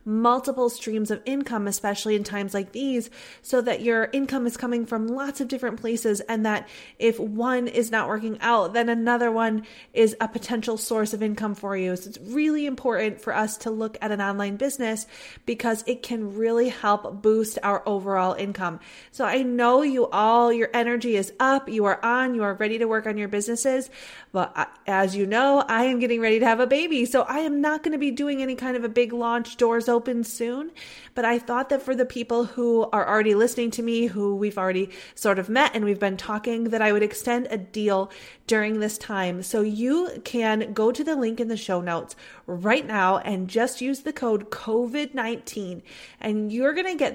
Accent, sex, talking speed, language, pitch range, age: American, female, 210 wpm, English, 210-245 Hz, 30-49